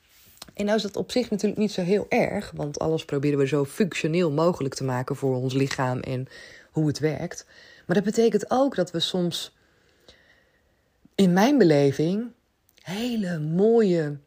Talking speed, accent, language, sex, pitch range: 165 wpm, Dutch, Dutch, female, 135-175 Hz